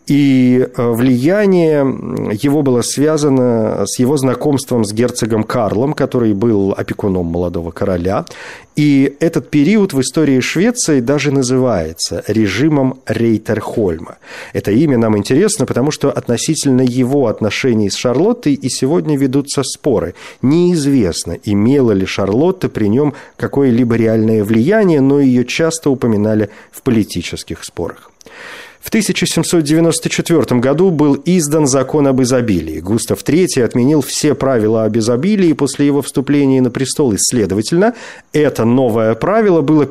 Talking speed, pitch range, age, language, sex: 125 wpm, 115-150 Hz, 40-59, Russian, male